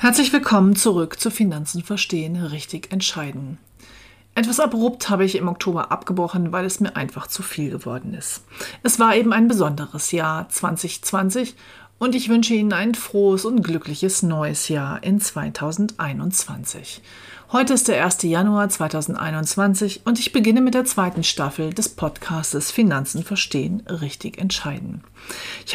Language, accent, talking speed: German, German, 145 wpm